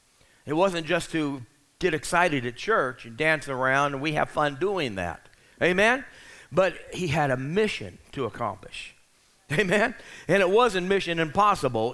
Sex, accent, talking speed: male, American, 155 wpm